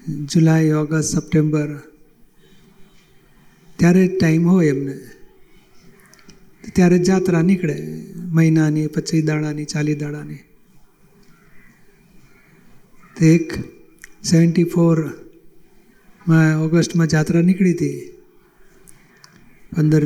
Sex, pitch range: male, 155-185 Hz